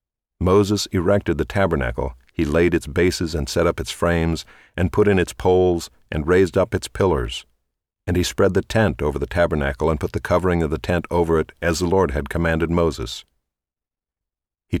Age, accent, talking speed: 50-69, American, 190 wpm